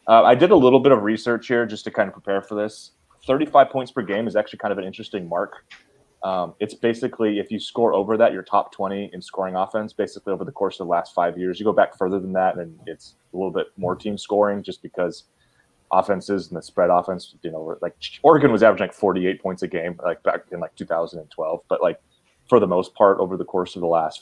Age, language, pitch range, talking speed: 20-39, English, 90-105 Hz, 245 wpm